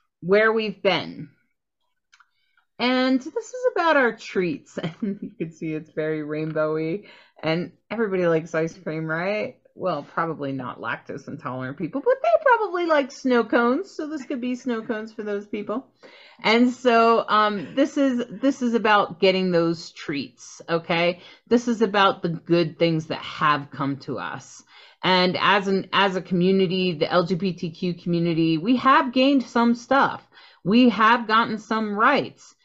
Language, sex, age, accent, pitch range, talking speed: English, female, 30-49, American, 170-255 Hz, 155 wpm